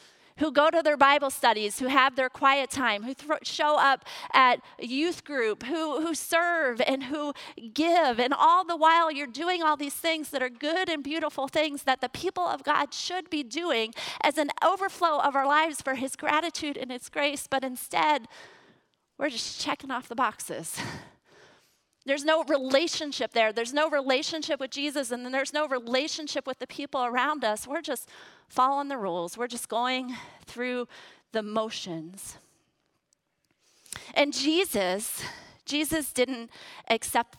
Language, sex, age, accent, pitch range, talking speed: English, female, 30-49, American, 255-305 Hz, 160 wpm